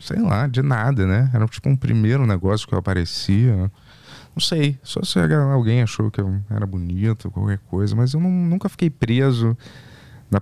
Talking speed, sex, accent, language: 185 wpm, male, Brazilian, Portuguese